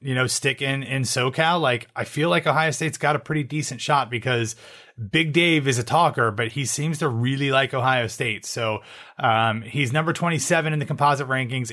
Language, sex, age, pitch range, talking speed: English, male, 30-49, 120-150 Hz, 205 wpm